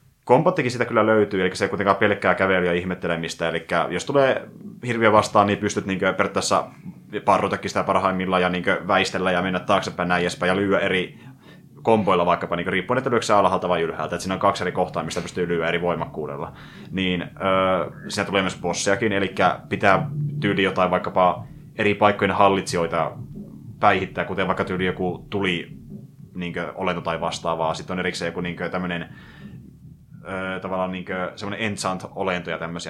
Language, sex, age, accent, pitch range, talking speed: Finnish, male, 30-49, native, 90-105 Hz, 170 wpm